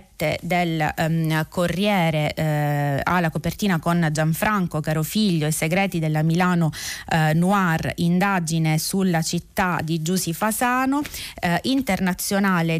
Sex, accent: female, native